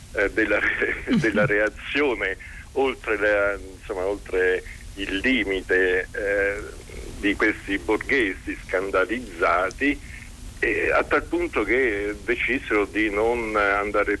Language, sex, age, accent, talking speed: Italian, male, 50-69, native, 95 wpm